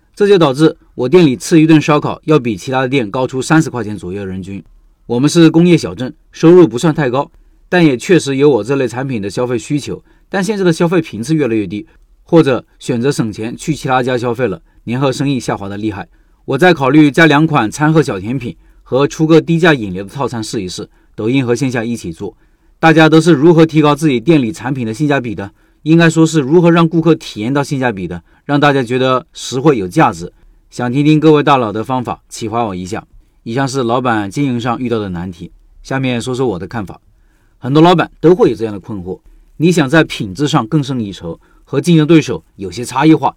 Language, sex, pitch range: Chinese, male, 115-160 Hz